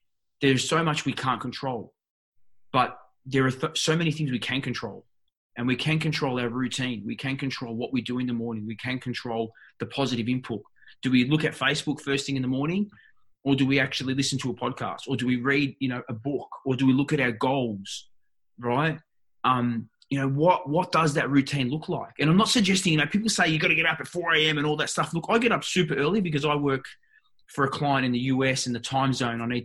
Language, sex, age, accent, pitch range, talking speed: English, male, 20-39, Australian, 125-160 Hz, 245 wpm